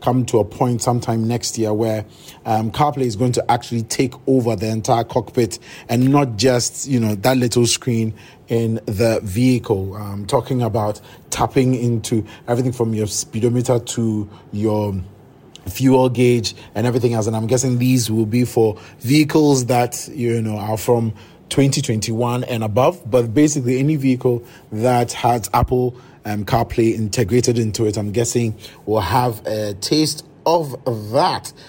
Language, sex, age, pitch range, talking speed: English, male, 30-49, 115-130 Hz, 155 wpm